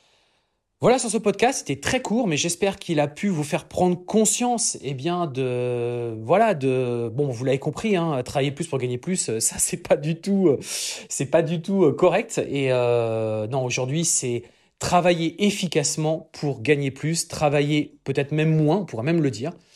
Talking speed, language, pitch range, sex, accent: 185 wpm, French, 140-190 Hz, male, French